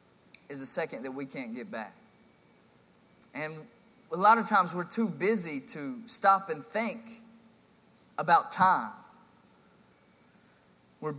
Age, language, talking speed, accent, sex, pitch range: 20-39, English, 125 wpm, American, male, 160-220 Hz